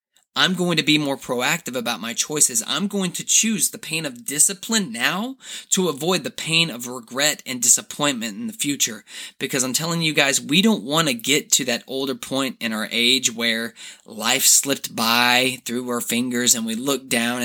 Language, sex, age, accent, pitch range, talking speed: English, male, 20-39, American, 130-180 Hz, 195 wpm